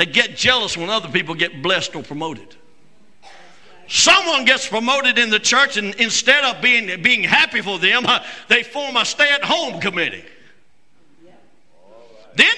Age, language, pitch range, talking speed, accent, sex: 60-79, English, 200-300 Hz, 145 wpm, American, male